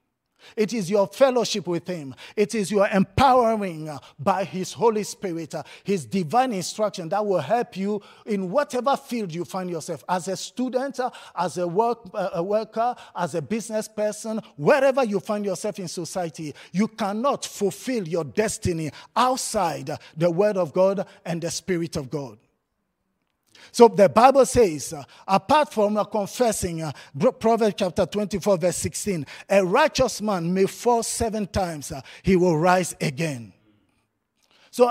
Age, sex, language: 50-69, male, English